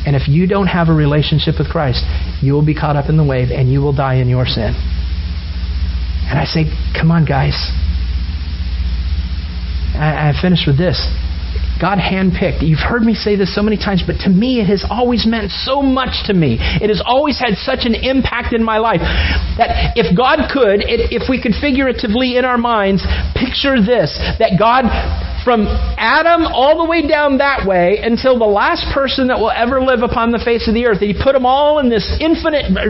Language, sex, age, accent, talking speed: English, male, 40-59, American, 200 wpm